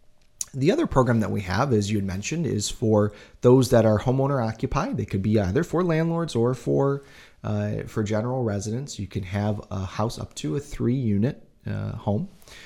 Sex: male